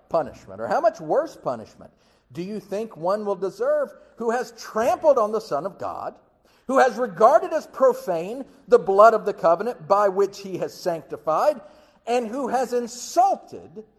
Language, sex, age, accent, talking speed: English, male, 50-69, American, 165 wpm